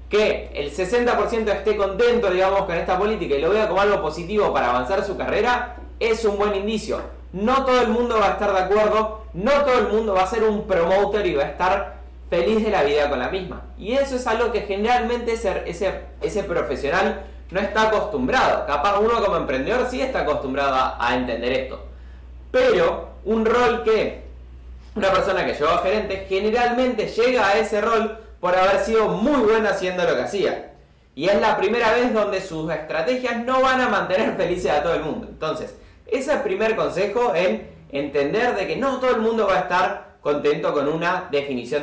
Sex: male